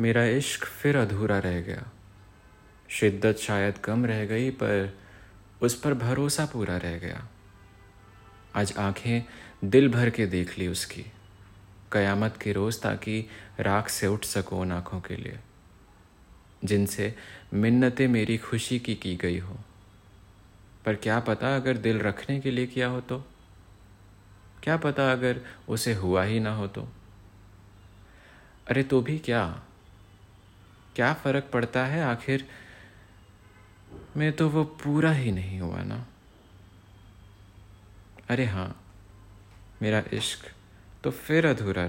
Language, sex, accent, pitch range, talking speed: Hindi, male, native, 95-115 Hz, 130 wpm